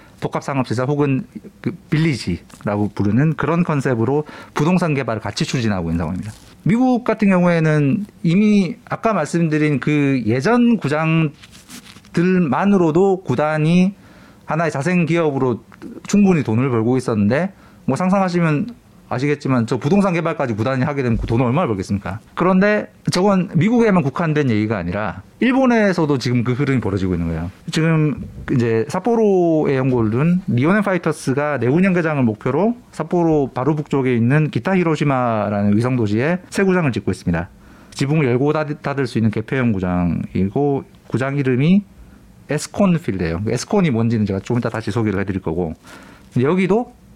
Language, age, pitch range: Korean, 40-59, 115-175 Hz